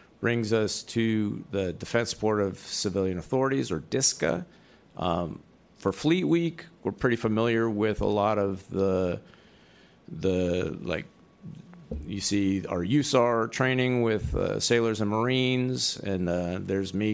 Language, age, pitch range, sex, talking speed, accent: English, 50-69, 95-115 Hz, male, 135 wpm, American